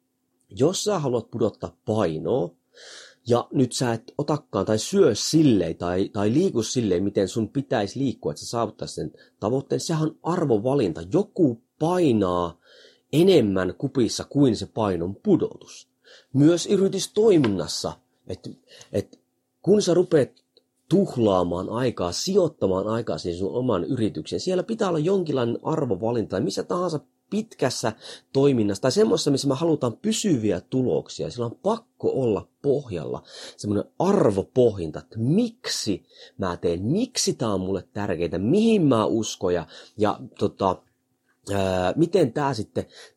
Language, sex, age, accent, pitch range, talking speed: Finnish, male, 30-49, native, 100-155 Hz, 130 wpm